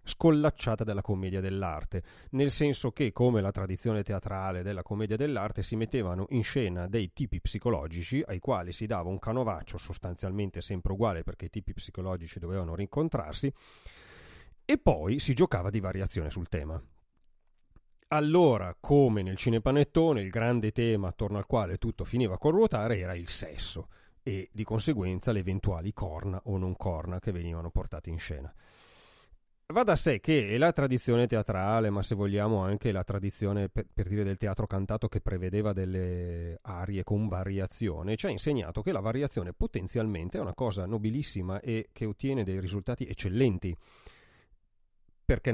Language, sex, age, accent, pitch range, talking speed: Italian, male, 30-49, native, 95-115 Hz, 155 wpm